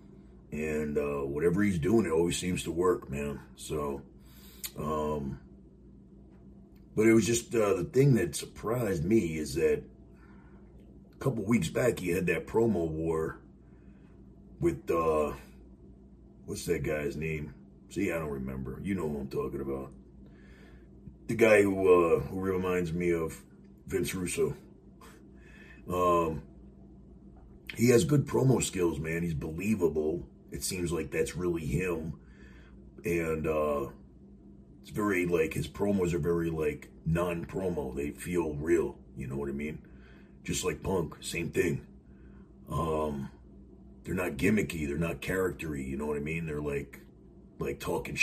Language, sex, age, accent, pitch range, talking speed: English, male, 40-59, American, 65-85 Hz, 145 wpm